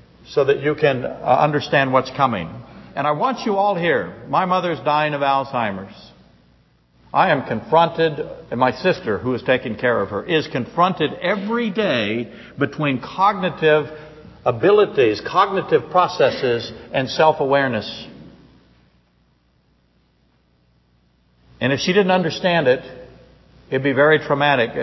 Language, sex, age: English, male, 60-79